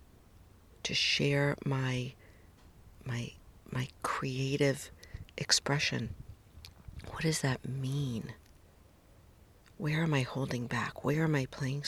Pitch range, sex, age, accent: 90-140 Hz, female, 50-69, American